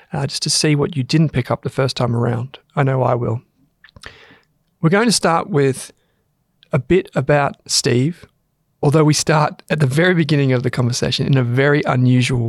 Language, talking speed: English, 190 wpm